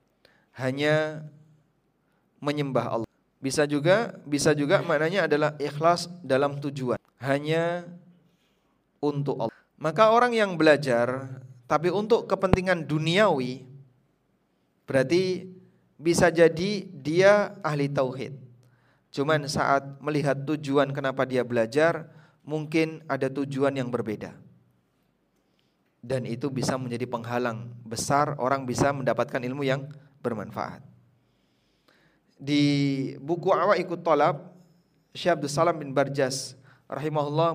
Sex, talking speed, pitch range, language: male, 100 wpm, 135-170 Hz, Indonesian